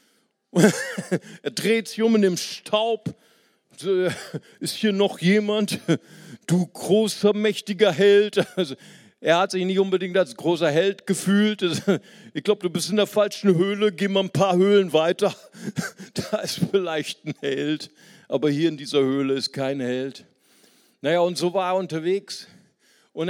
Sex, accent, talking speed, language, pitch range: male, German, 155 wpm, German, 170-225 Hz